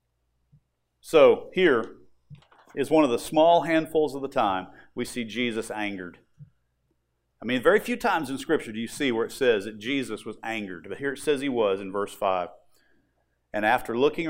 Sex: male